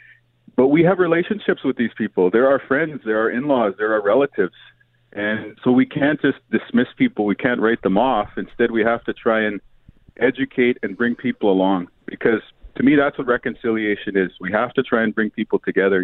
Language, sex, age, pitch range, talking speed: English, male, 40-59, 105-130 Hz, 200 wpm